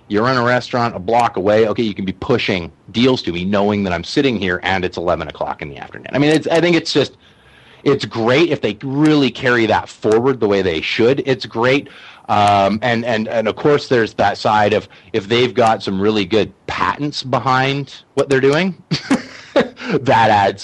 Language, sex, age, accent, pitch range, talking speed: English, male, 30-49, American, 90-135 Hz, 205 wpm